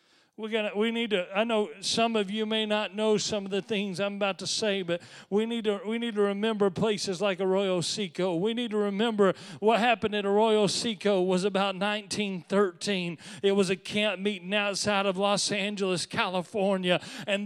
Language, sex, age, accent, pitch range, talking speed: English, male, 40-59, American, 200-230 Hz, 195 wpm